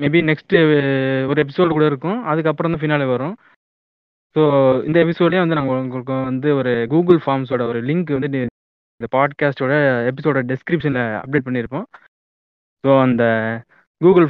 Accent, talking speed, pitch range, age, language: native, 135 wpm, 130-155 Hz, 20-39, Tamil